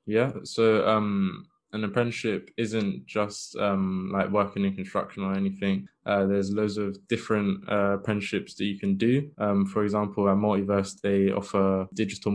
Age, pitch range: 20-39, 100-110 Hz